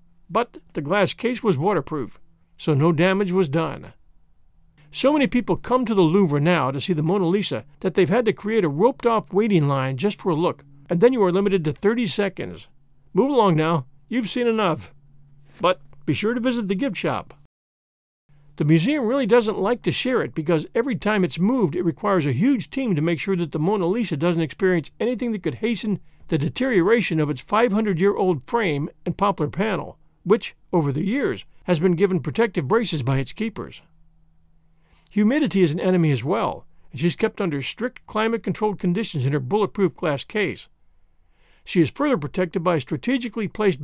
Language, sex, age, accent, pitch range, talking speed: English, male, 50-69, American, 150-215 Hz, 190 wpm